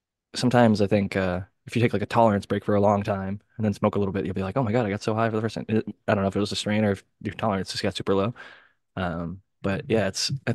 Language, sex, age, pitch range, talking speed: English, male, 20-39, 95-110 Hz, 320 wpm